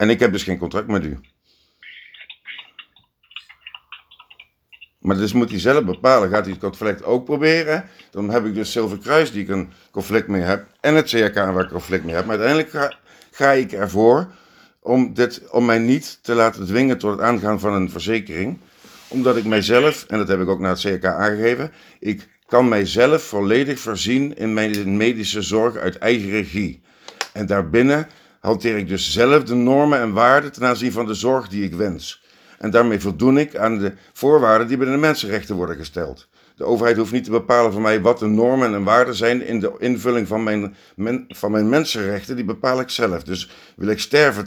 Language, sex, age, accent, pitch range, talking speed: Dutch, male, 50-69, Dutch, 100-125 Hz, 200 wpm